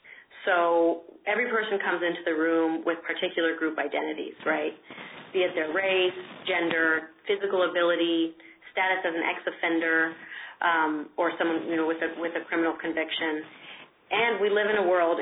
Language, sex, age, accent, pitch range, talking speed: English, female, 30-49, American, 165-200 Hz, 160 wpm